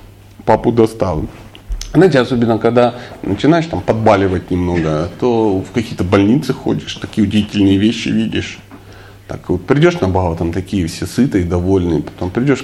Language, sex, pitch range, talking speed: Russian, male, 95-135 Hz, 140 wpm